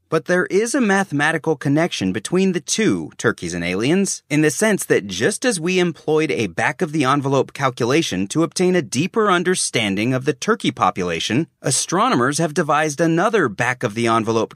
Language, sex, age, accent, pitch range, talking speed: English, male, 30-49, American, 120-180 Hz, 155 wpm